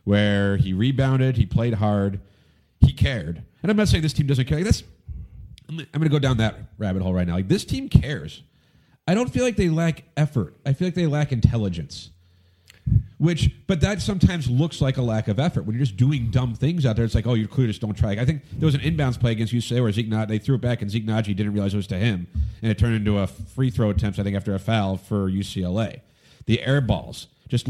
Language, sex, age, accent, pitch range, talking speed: English, male, 40-59, American, 100-135 Hz, 245 wpm